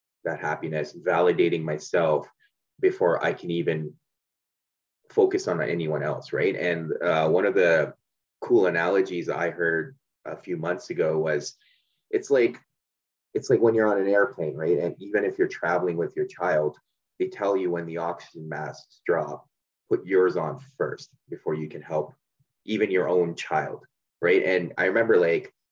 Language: English